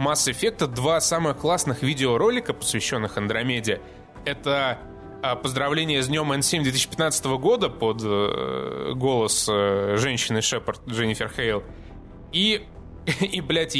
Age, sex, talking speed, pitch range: 20-39, male, 115 wpm, 110-150 Hz